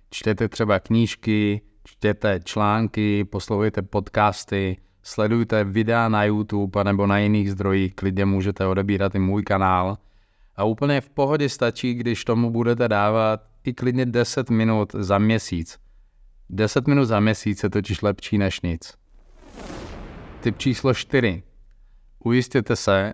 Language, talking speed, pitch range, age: Czech, 130 wpm, 100-115 Hz, 30-49